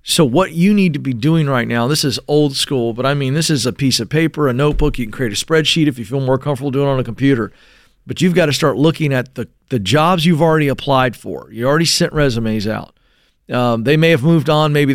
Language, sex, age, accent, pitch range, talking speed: English, male, 40-59, American, 130-165 Hz, 260 wpm